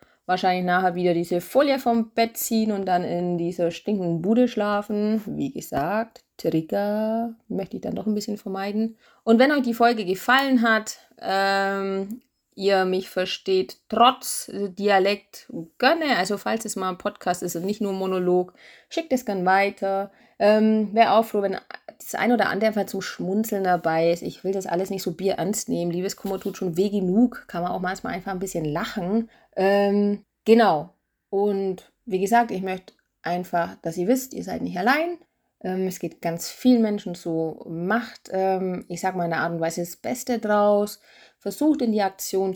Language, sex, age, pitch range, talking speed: German, female, 30-49, 180-220 Hz, 180 wpm